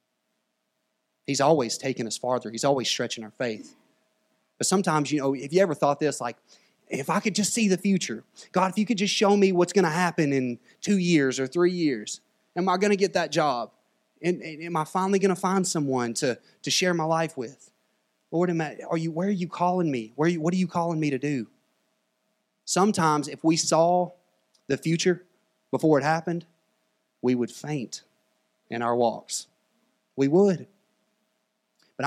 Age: 30-49